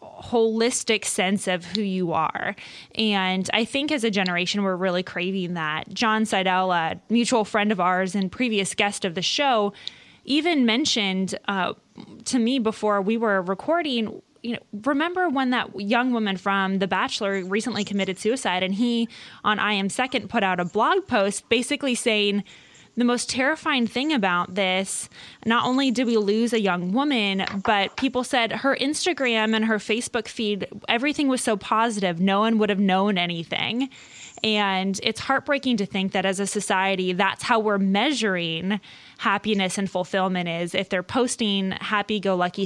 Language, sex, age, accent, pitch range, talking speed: English, female, 20-39, American, 190-230 Hz, 165 wpm